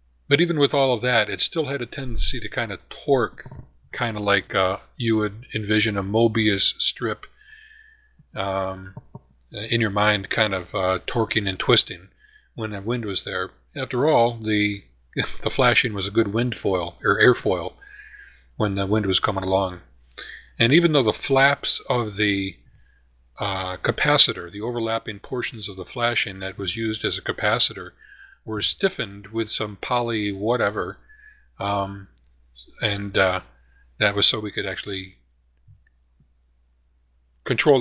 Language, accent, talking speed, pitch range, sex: English, American, 150 wpm, 95-120 Hz, male